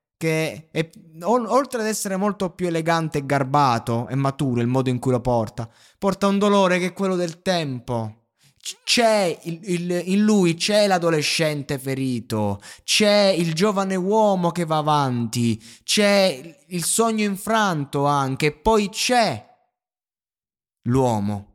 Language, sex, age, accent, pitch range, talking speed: Italian, male, 20-39, native, 125-170 Hz, 130 wpm